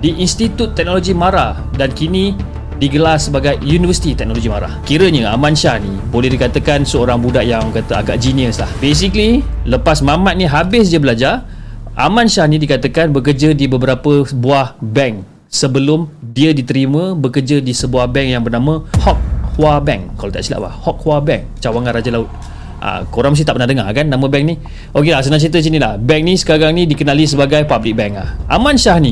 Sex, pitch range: male, 120-160 Hz